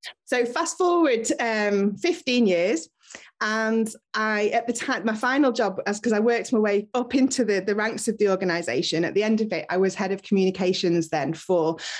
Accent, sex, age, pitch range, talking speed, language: British, female, 30-49, 175-220 Hz, 200 wpm, English